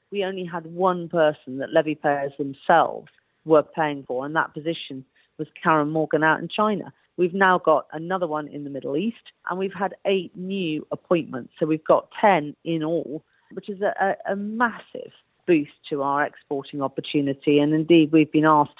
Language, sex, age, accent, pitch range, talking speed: English, female, 40-59, British, 145-185 Hz, 180 wpm